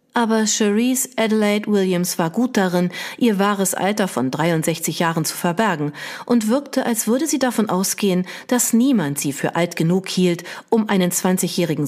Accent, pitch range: German, 165-215 Hz